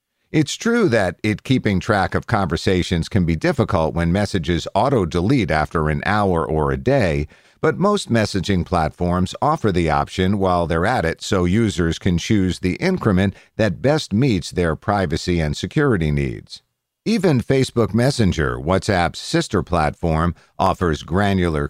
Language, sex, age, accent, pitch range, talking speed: English, male, 50-69, American, 85-115 Hz, 145 wpm